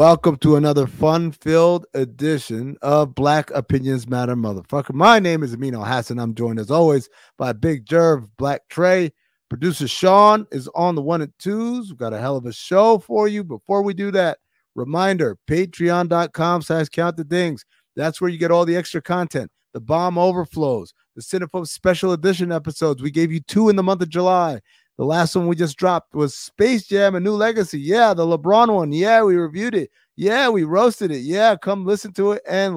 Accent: American